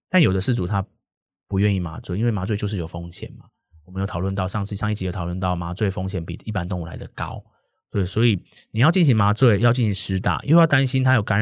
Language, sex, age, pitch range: Chinese, male, 20-39, 95-120 Hz